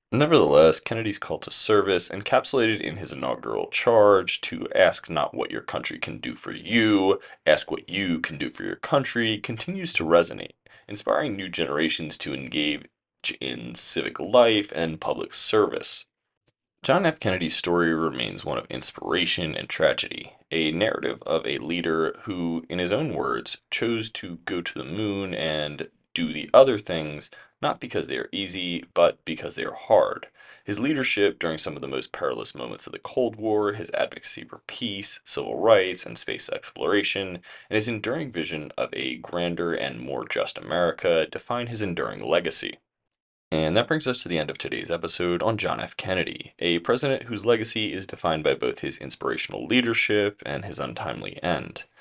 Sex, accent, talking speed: male, American, 170 wpm